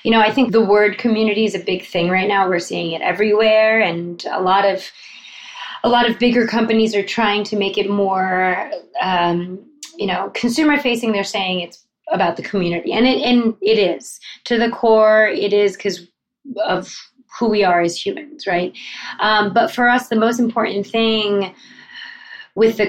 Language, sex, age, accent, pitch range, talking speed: English, female, 20-39, American, 190-230 Hz, 185 wpm